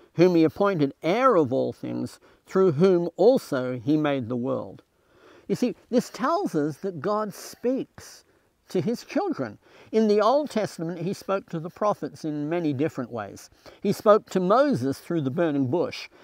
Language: English